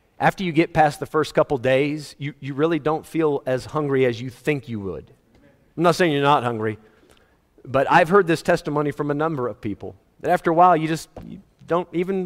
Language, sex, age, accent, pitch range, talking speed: English, male, 40-59, American, 120-160 Hz, 215 wpm